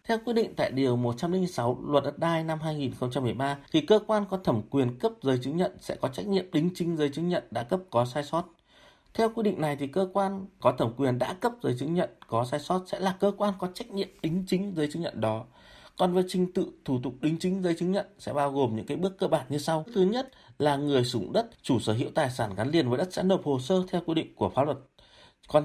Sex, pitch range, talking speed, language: male, 130-190 Hz, 265 wpm, Vietnamese